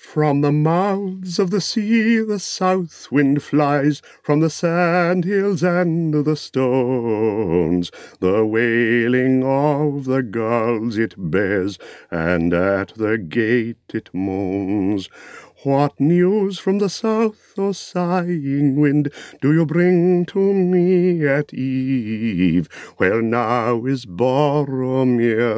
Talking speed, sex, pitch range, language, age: 115 wpm, male, 120-195 Hz, English, 40-59